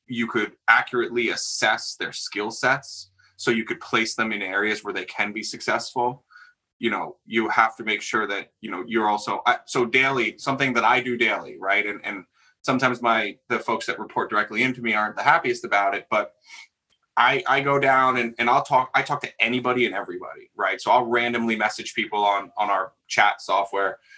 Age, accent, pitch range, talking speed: 20-39, American, 110-130 Hz, 205 wpm